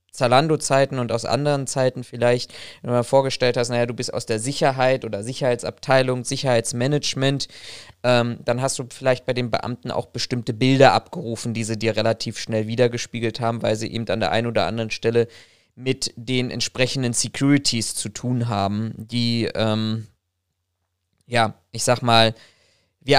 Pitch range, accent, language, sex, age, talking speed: 115-140 Hz, German, German, male, 20-39, 160 wpm